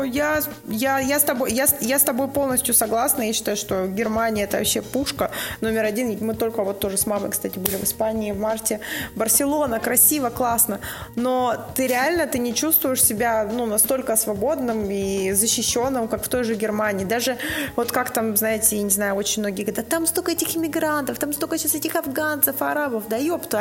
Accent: native